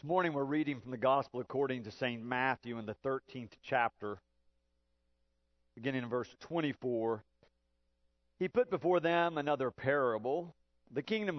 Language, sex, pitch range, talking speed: English, male, 120-175 Hz, 140 wpm